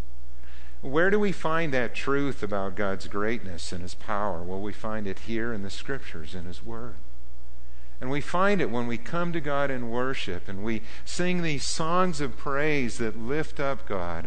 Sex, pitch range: male, 85-125 Hz